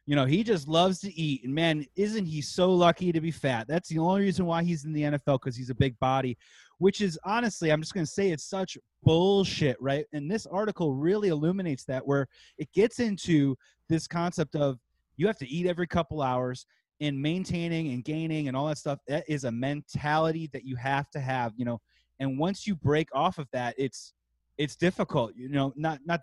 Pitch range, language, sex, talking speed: 135-175 Hz, English, male, 215 wpm